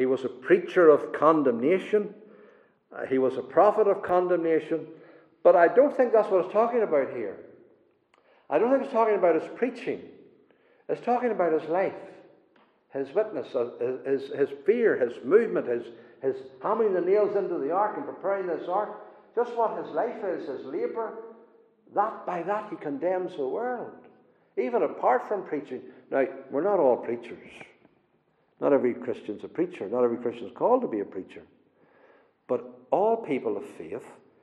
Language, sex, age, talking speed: English, male, 60-79, 170 wpm